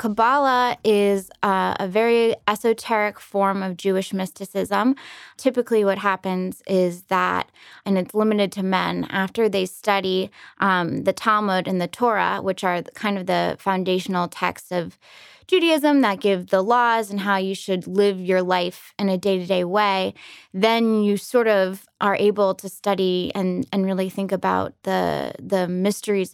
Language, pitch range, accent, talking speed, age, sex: English, 185-215 Hz, American, 155 wpm, 20-39, female